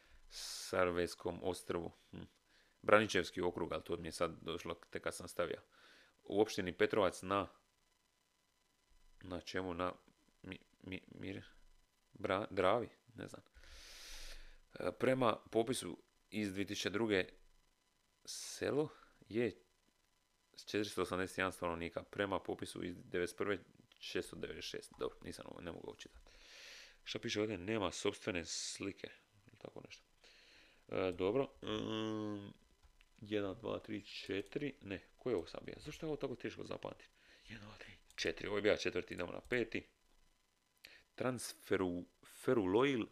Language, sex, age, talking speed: Croatian, male, 30-49, 115 wpm